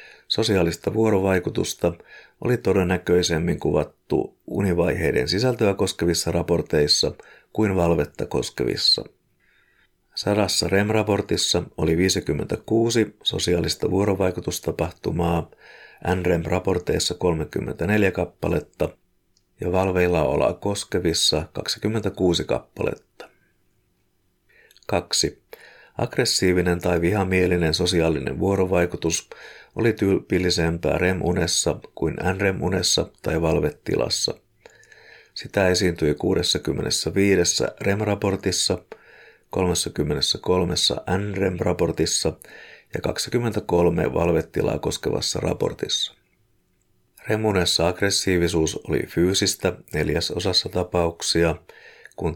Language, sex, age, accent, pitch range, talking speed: Finnish, male, 50-69, native, 85-100 Hz, 65 wpm